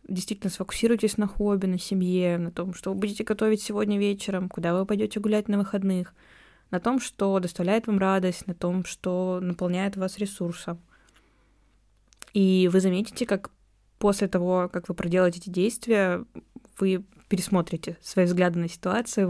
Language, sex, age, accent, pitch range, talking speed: Russian, female, 20-39, native, 170-200 Hz, 150 wpm